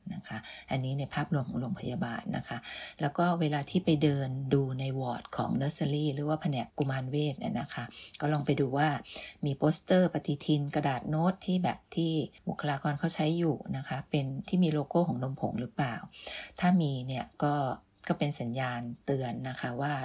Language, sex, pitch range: Thai, female, 135-160 Hz